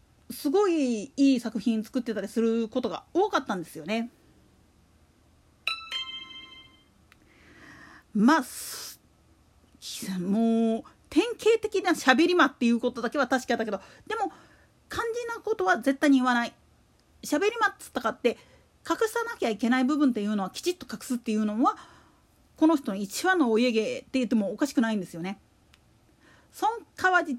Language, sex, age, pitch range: Japanese, female, 40-59, 225-335 Hz